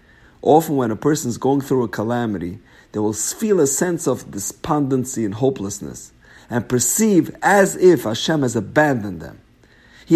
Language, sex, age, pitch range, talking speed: English, male, 50-69, 105-145 Hz, 160 wpm